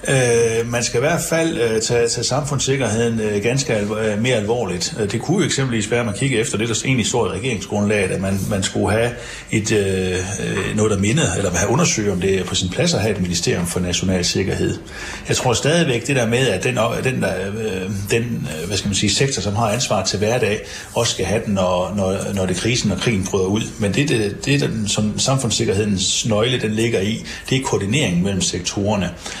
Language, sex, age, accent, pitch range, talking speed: Danish, male, 60-79, native, 95-125 Hz, 210 wpm